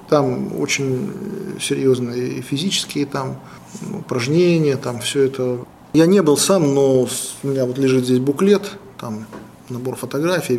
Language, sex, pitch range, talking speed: Russian, male, 130-155 Hz, 130 wpm